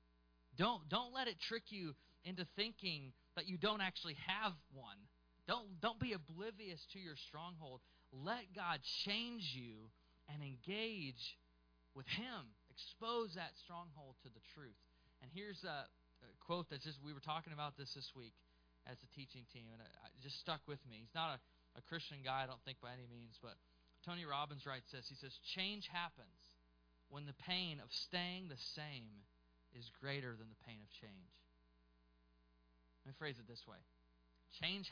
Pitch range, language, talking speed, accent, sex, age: 105-165 Hz, English, 170 wpm, American, male, 20-39